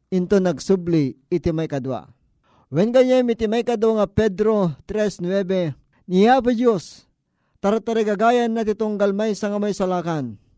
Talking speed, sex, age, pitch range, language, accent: 130 wpm, male, 50-69, 170-205 Hz, Filipino, native